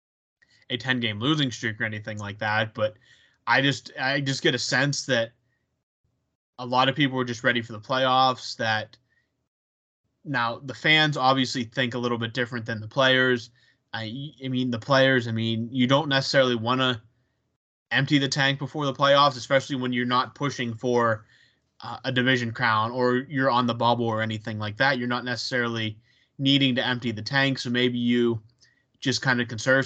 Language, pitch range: English, 115-130 Hz